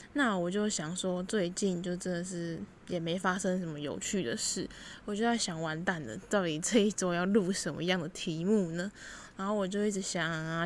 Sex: female